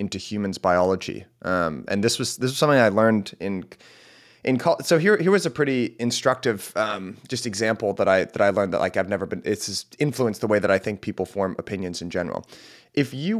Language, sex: English, male